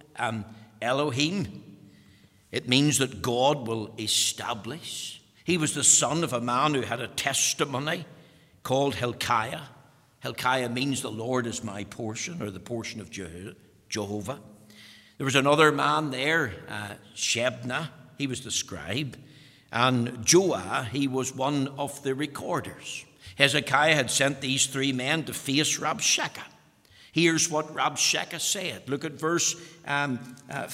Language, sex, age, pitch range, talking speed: English, male, 60-79, 115-155 Hz, 135 wpm